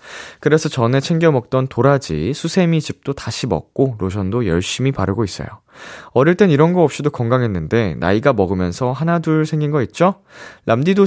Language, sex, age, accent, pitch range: Korean, male, 20-39, native, 100-150 Hz